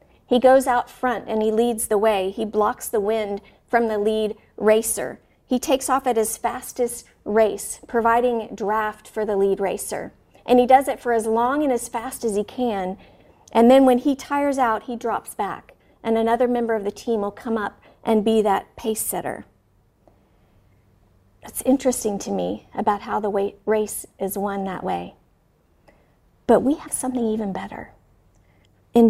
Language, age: English, 40-59